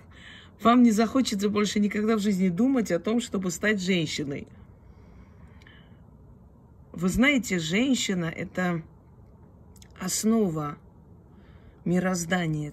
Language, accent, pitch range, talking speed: Russian, native, 130-190 Hz, 95 wpm